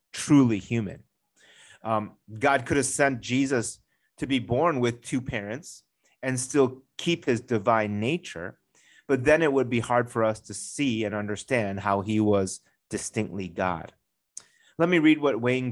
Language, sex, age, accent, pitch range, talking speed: English, male, 30-49, American, 105-135 Hz, 160 wpm